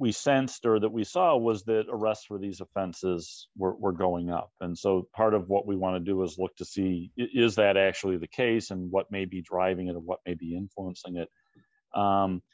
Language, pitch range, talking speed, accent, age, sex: English, 90-110 Hz, 225 wpm, American, 40-59, male